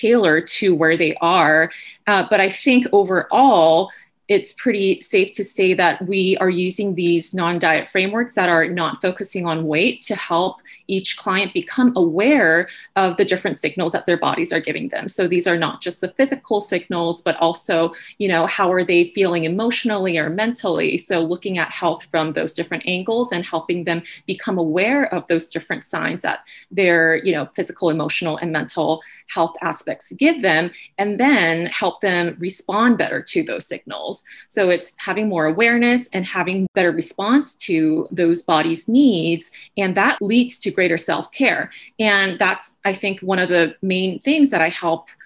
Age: 30-49